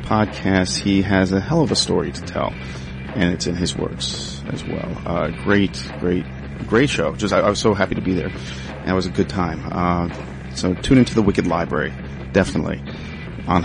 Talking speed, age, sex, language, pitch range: 200 wpm, 30-49, male, English, 70-105 Hz